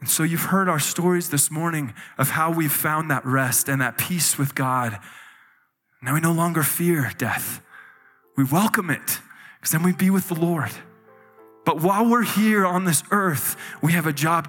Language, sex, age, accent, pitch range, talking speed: English, male, 20-39, American, 135-175 Hz, 190 wpm